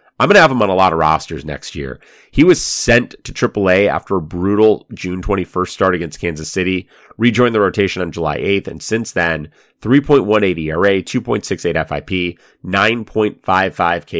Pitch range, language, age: 85-110 Hz, English, 30-49